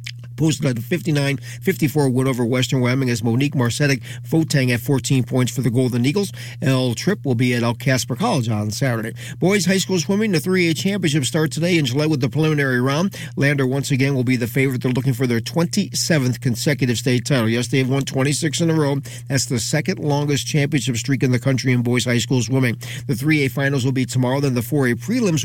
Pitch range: 125-150 Hz